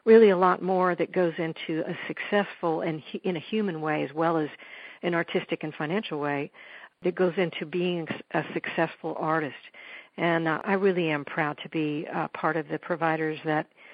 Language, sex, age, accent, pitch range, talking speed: English, female, 60-79, American, 170-210 Hz, 185 wpm